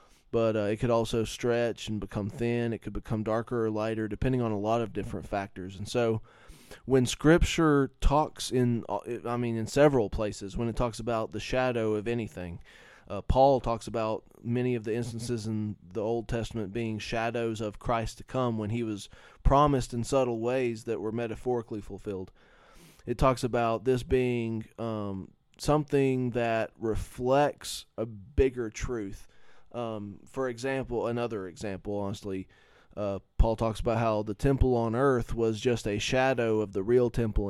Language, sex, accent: English, male, American